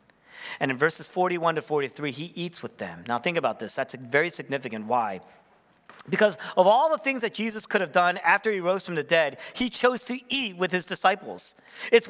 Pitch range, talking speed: 145-230 Hz, 215 wpm